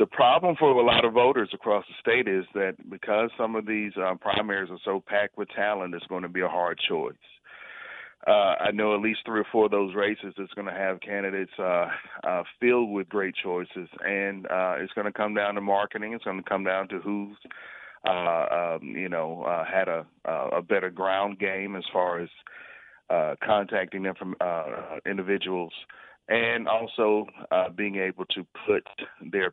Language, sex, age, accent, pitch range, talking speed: English, male, 40-59, American, 95-105 Hz, 195 wpm